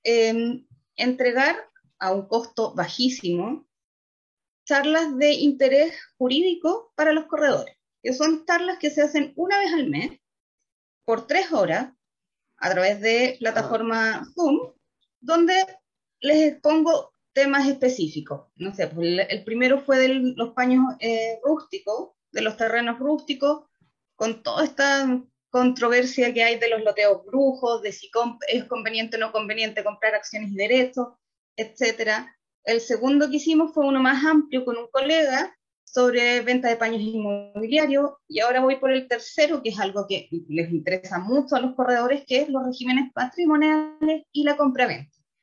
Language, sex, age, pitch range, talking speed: Spanish, female, 20-39, 225-290 Hz, 150 wpm